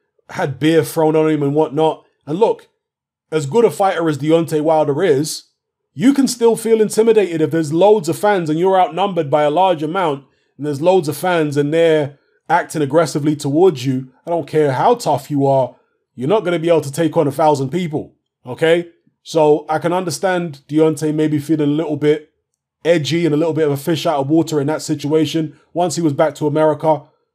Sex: male